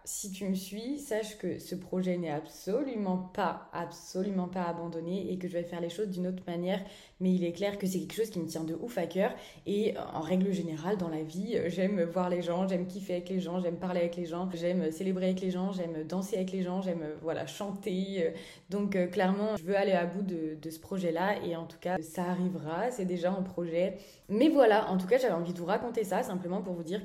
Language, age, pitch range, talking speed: French, 20-39, 175-200 Hz, 240 wpm